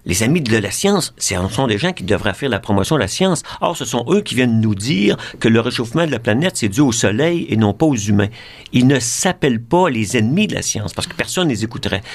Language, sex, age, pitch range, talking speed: French, male, 50-69, 105-145 Hz, 270 wpm